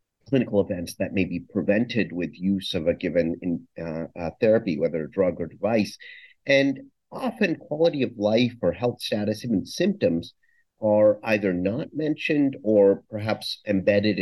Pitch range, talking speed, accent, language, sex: 95-130 Hz, 155 wpm, American, English, male